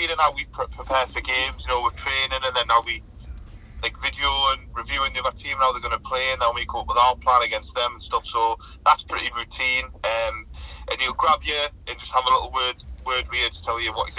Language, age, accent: English, 20-39, British